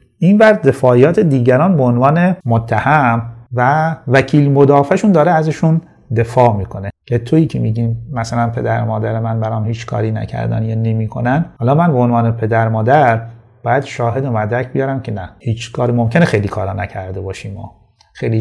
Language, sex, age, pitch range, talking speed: Persian, male, 30-49, 115-155 Hz, 165 wpm